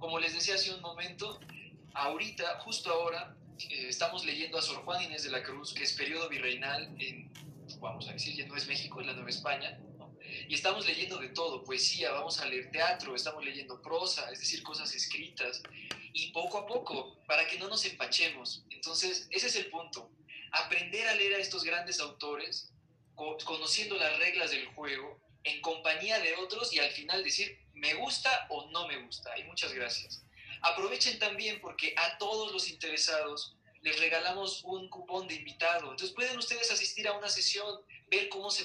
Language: Spanish